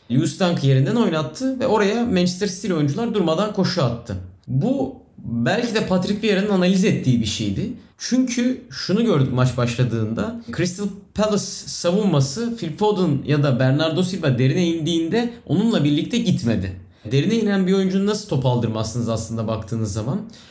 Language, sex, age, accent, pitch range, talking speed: Turkish, male, 30-49, native, 125-200 Hz, 145 wpm